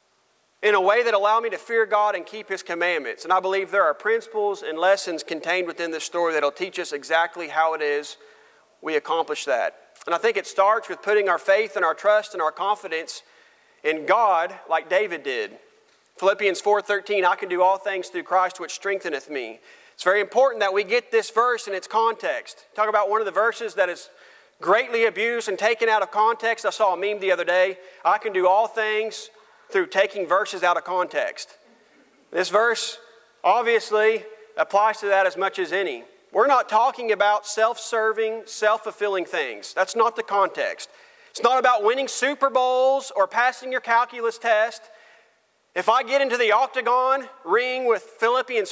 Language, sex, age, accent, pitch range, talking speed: English, male, 40-59, American, 195-255 Hz, 190 wpm